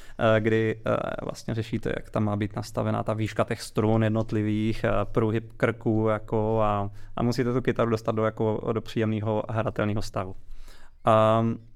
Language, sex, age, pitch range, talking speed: Czech, male, 20-39, 110-130 Hz, 150 wpm